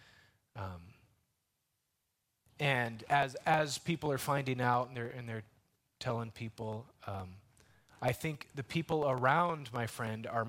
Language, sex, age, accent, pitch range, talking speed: English, male, 30-49, American, 110-145 Hz, 130 wpm